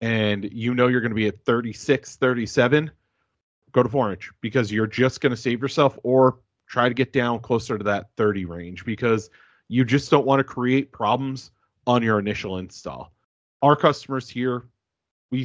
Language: English